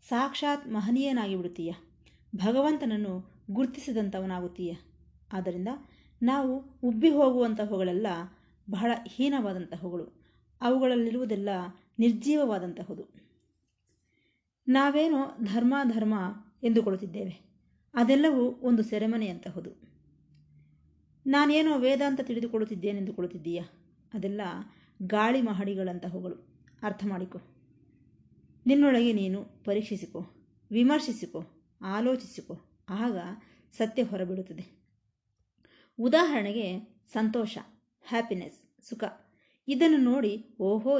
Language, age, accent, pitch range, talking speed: Kannada, 20-39, native, 185-255 Hz, 70 wpm